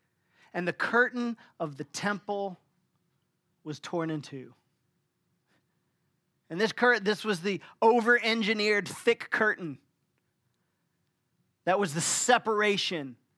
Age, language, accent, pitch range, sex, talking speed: 40-59, English, American, 165-225 Hz, male, 110 wpm